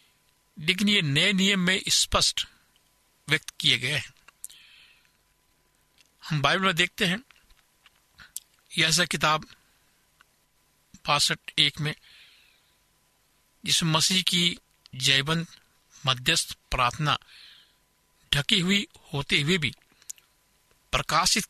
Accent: native